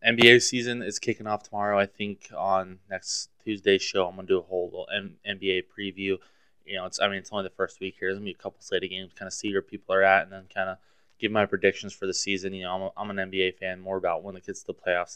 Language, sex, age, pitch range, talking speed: English, male, 20-39, 90-100 Hz, 275 wpm